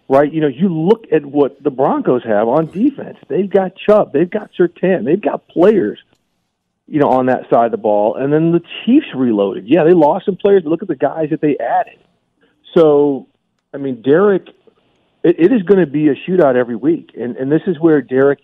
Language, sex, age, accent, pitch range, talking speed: English, male, 40-59, American, 115-145 Hz, 220 wpm